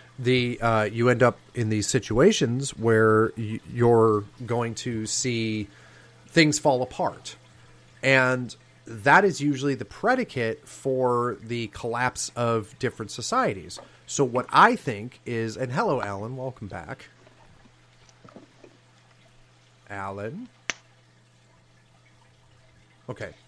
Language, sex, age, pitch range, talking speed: English, male, 30-49, 110-145 Hz, 105 wpm